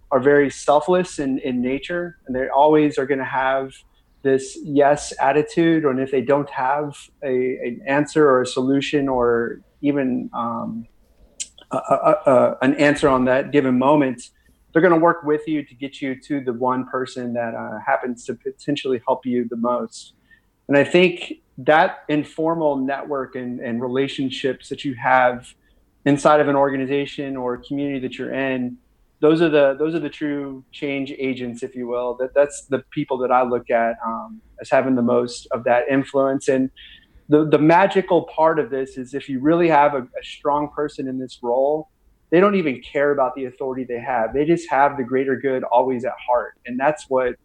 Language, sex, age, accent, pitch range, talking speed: English, male, 30-49, American, 125-145 Hz, 185 wpm